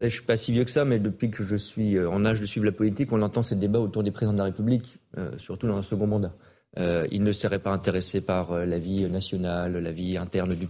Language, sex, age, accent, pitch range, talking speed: French, male, 40-59, French, 100-125 Hz, 275 wpm